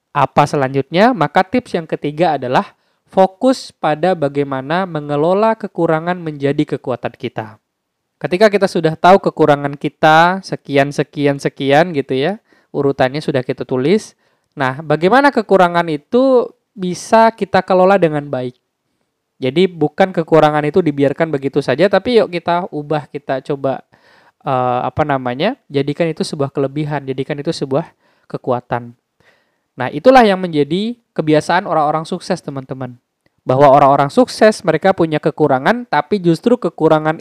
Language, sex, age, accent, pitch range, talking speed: Indonesian, male, 20-39, native, 140-185 Hz, 125 wpm